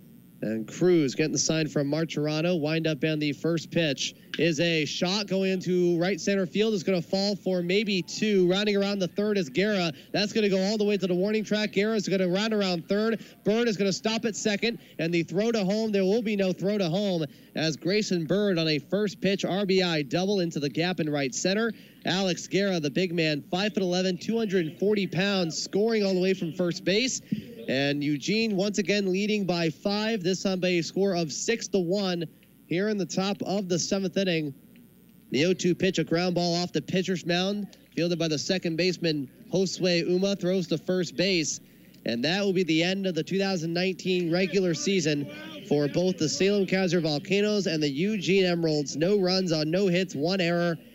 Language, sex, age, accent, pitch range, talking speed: English, male, 30-49, American, 165-200 Hz, 205 wpm